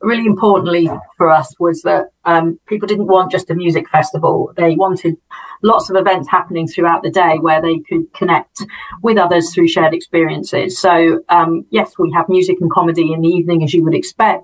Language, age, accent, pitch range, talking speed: English, 40-59, British, 165-185 Hz, 195 wpm